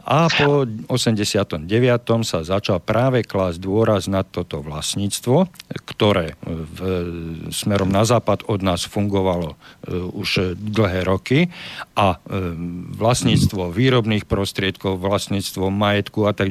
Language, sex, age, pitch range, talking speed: Slovak, male, 50-69, 90-115 Hz, 105 wpm